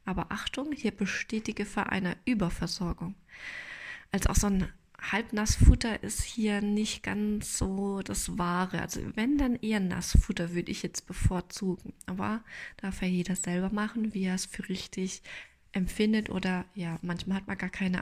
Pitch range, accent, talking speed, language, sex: 180-215 Hz, German, 165 wpm, German, female